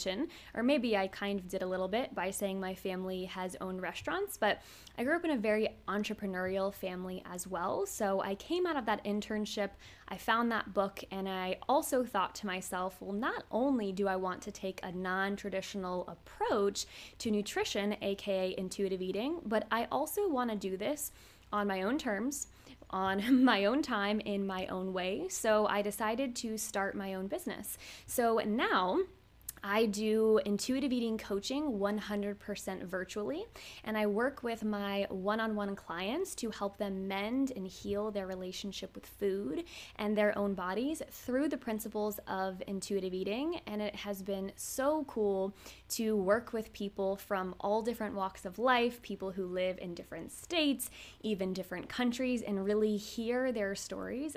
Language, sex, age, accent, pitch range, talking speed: English, female, 20-39, American, 195-230 Hz, 170 wpm